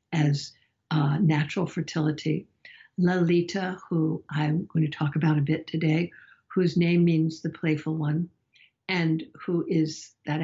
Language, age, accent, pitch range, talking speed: English, 60-79, American, 155-180 Hz, 140 wpm